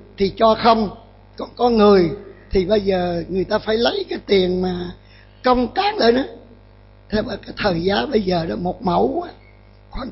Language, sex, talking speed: Vietnamese, male, 185 wpm